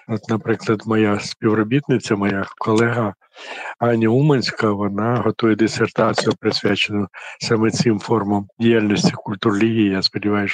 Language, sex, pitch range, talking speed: Ukrainian, male, 110-125 Hz, 110 wpm